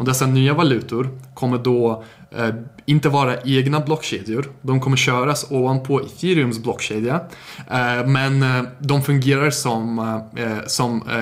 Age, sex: 20-39, male